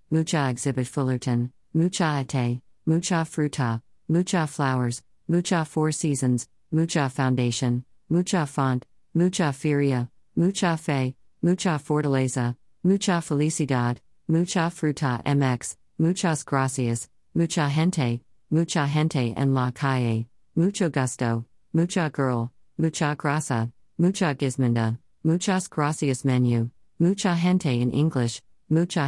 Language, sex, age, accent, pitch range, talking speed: English, female, 50-69, American, 125-165 Hz, 105 wpm